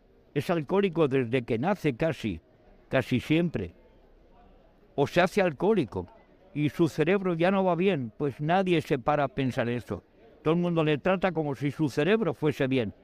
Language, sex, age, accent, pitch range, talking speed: Spanish, male, 60-79, Spanish, 140-180 Hz, 170 wpm